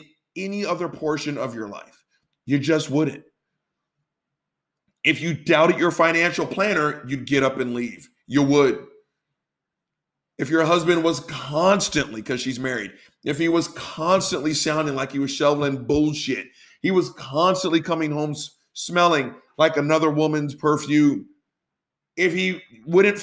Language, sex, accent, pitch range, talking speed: English, male, American, 150-205 Hz, 135 wpm